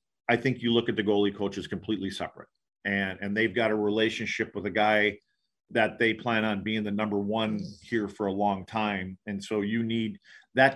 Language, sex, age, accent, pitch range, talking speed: English, male, 40-59, American, 100-115 Hz, 205 wpm